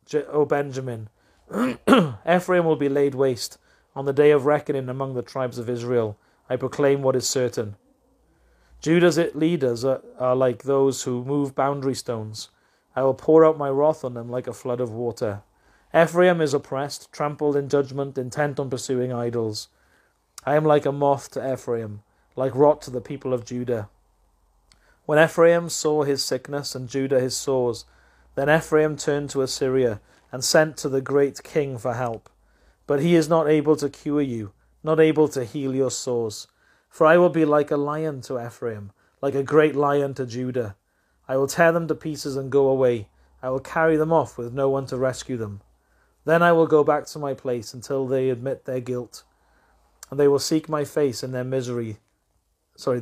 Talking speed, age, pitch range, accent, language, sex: 185 wpm, 30-49, 125-150 Hz, British, English, male